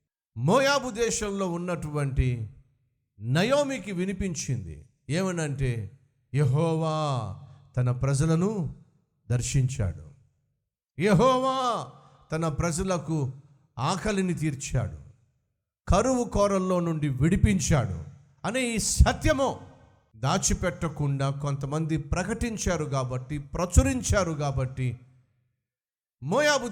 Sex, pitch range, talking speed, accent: male, 140-190 Hz, 65 wpm, native